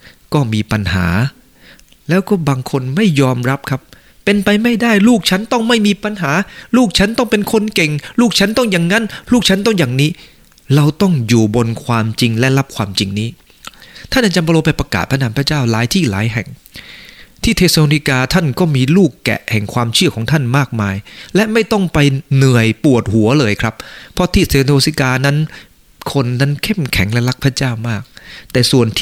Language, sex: English, male